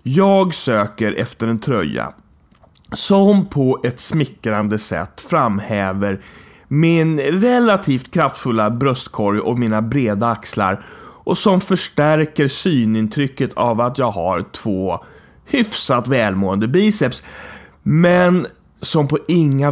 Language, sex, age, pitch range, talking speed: English, male, 30-49, 115-175 Hz, 105 wpm